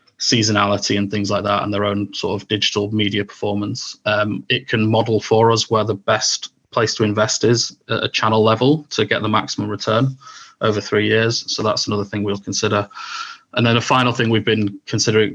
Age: 20-39